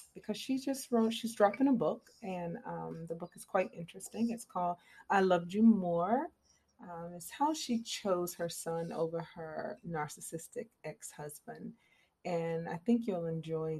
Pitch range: 165-210 Hz